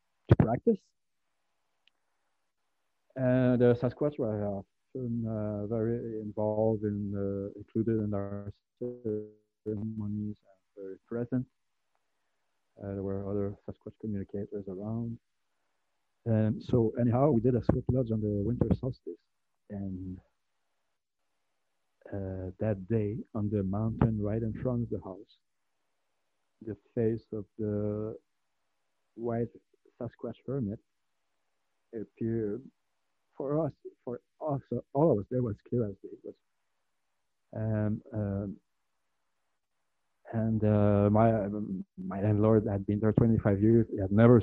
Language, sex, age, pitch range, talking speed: English, male, 50-69, 100-120 Hz, 120 wpm